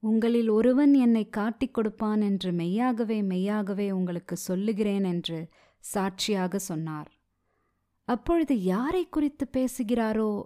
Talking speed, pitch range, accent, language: 100 wpm, 180-260 Hz, native, Tamil